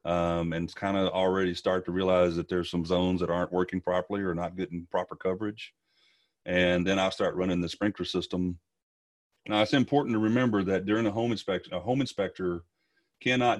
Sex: male